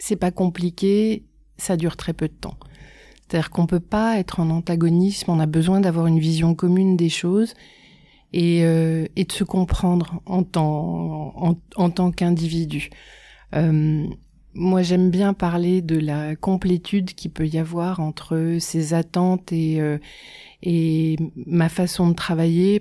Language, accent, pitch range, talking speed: French, French, 160-180 Hz, 155 wpm